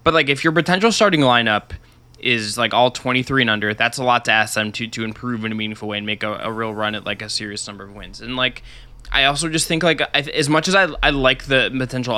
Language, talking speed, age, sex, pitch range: English, 275 wpm, 10-29, male, 115-135 Hz